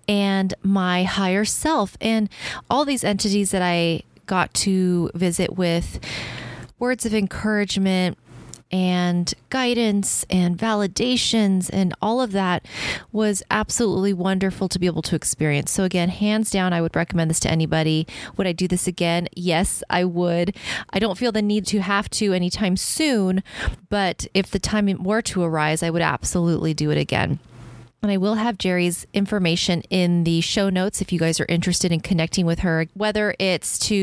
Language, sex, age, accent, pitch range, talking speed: English, female, 30-49, American, 170-210 Hz, 170 wpm